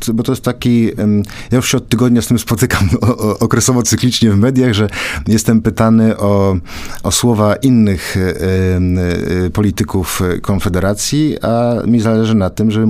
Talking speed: 145 wpm